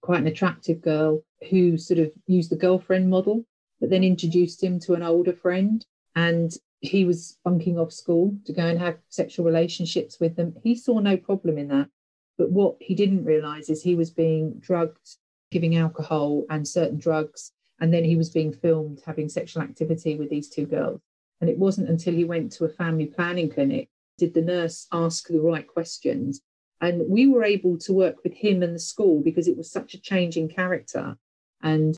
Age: 40-59